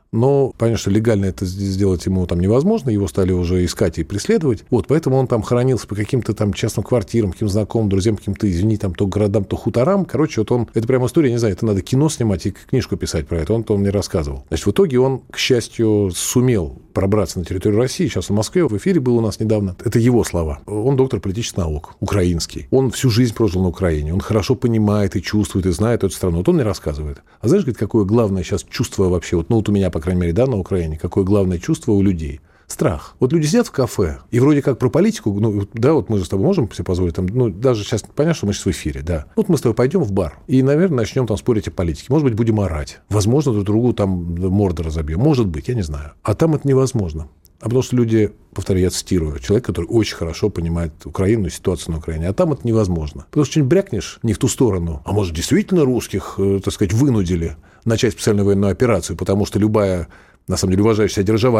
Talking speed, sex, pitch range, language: 230 wpm, male, 95-125 Hz, Russian